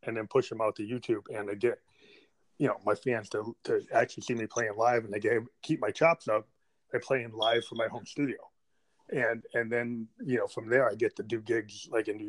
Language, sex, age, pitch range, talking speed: English, male, 30-49, 115-140 Hz, 245 wpm